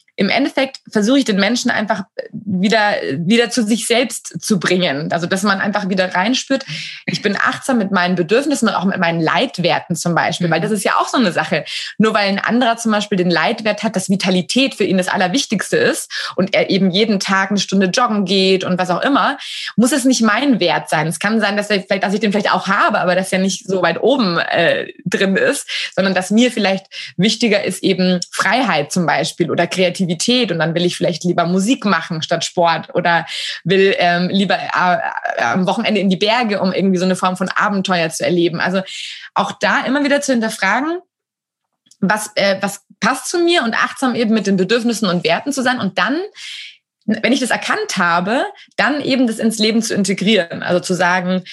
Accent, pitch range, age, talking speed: German, 180-230 Hz, 20-39, 210 wpm